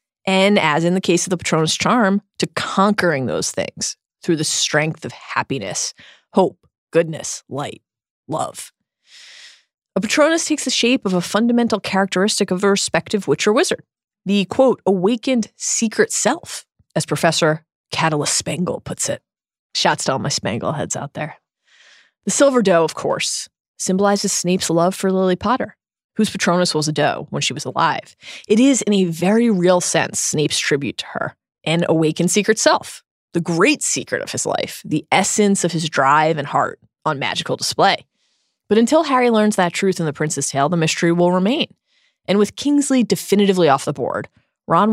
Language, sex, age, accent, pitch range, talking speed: English, female, 20-39, American, 170-230 Hz, 170 wpm